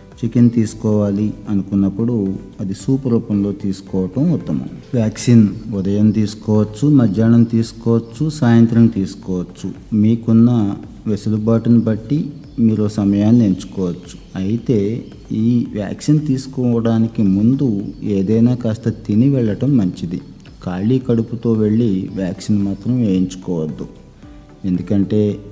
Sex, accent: male, native